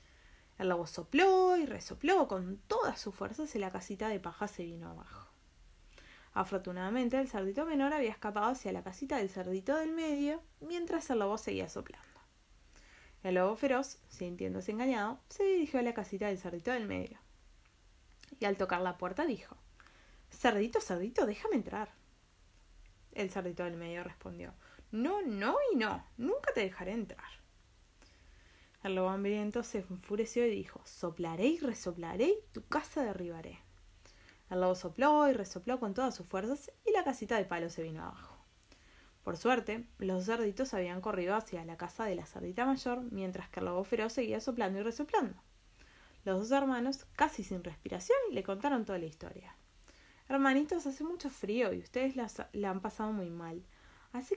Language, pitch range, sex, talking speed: Spanish, 175-255 Hz, female, 160 wpm